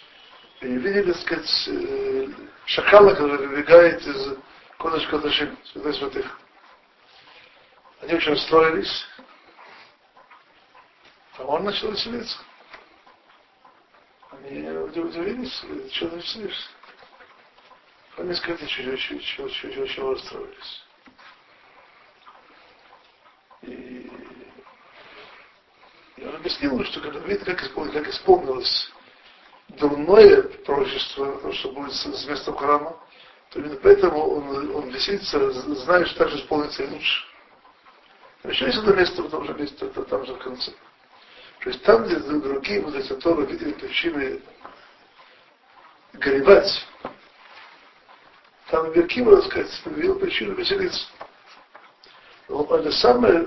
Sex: male